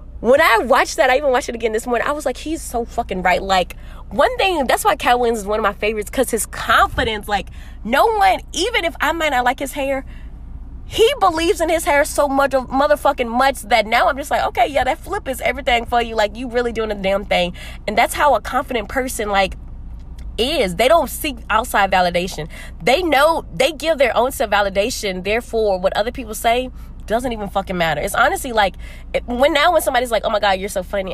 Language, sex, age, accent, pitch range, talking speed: English, female, 20-39, American, 205-285 Hz, 220 wpm